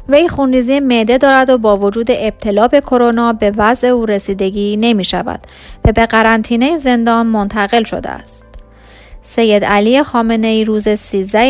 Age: 30-49